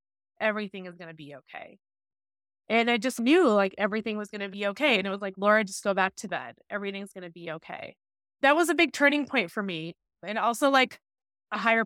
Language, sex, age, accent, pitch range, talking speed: English, female, 20-39, American, 200-255 Hz, 230 wpm